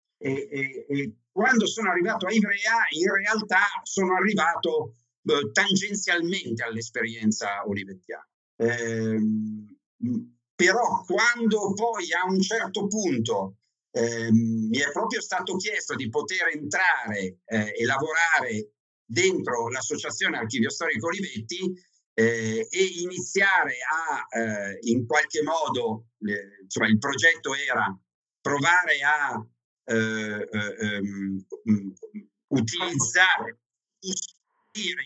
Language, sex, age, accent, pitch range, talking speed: Italian, male, 50-69, native, 115-185 Hz, 100 wpm